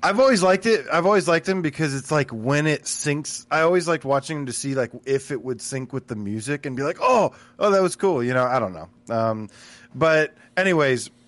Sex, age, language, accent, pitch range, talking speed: male, 20-39, English, American, 125-155 Hz, 240 wpm